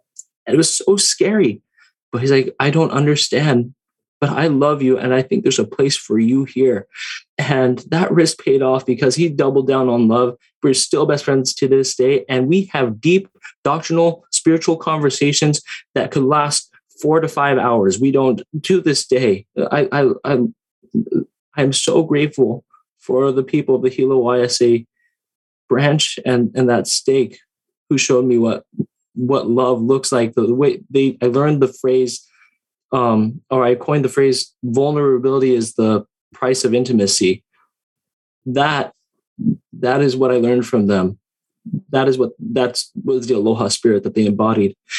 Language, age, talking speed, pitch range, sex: English, 20-39, 165 wpm, 125-150 Hz, male